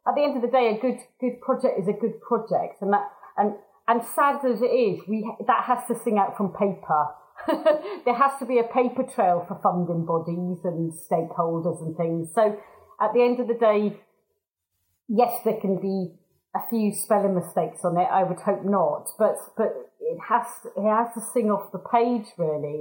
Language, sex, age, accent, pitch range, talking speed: English, female, 30-49, British, 180-245 Hz, 205 wpm